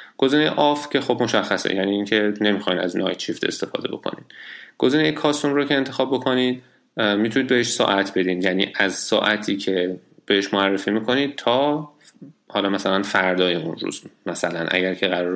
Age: 30-49